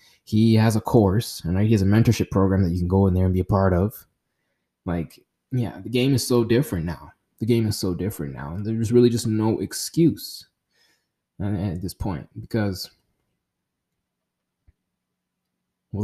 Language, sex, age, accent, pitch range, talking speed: English, male, 20-39, American, 95-120 Hz, 170 wpm